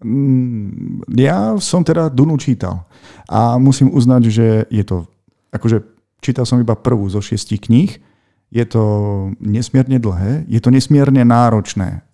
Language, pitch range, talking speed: Slovak, 105-125 Hz, 135 wpm